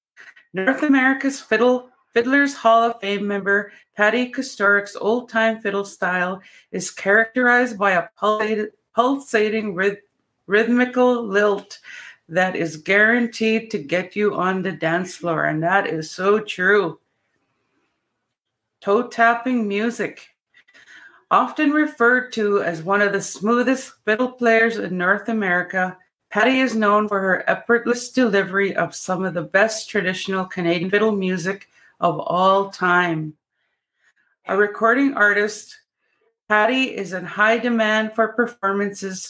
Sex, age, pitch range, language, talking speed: female, 30-49, 190-235 Hz, English, 120 wpm